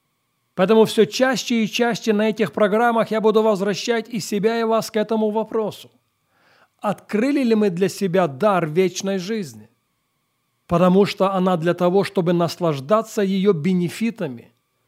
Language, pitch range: English, 170-220 Hz